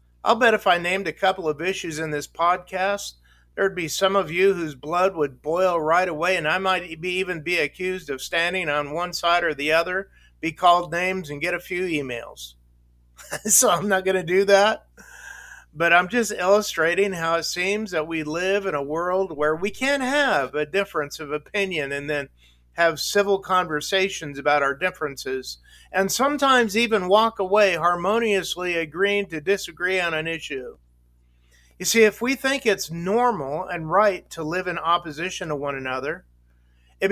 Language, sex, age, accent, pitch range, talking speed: English, male, 50-69, American, 150-195 Hz, 180 wpm